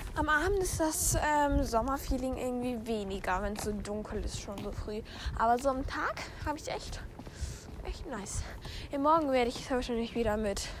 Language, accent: German, German